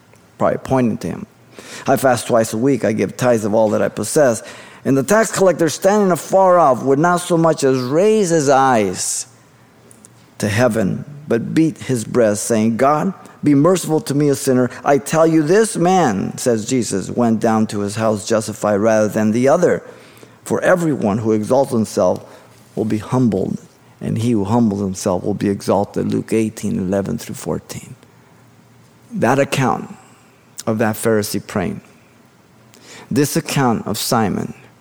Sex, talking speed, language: male, 160 wpm, English